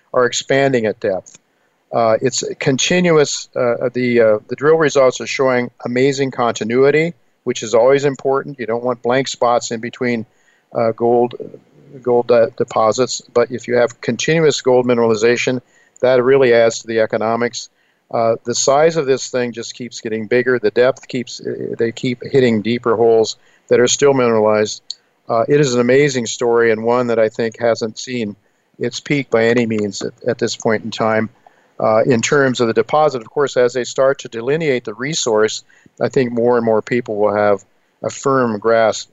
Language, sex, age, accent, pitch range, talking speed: English, male, 50-69, American, 115-130 Hz, 180 wpm